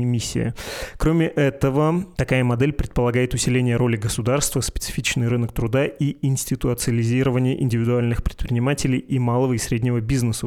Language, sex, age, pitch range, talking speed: Russian, male, 20-39, 120-135 Hz, 120 wpm